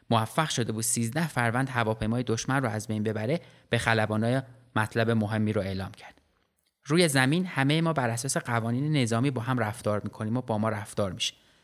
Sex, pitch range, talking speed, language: male, 110-140 Hz, 185 wpm, Persian